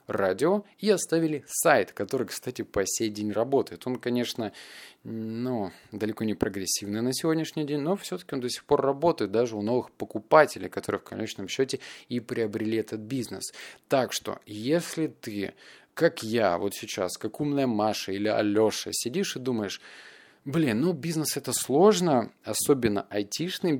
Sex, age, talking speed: male, 20-39, 155 wpm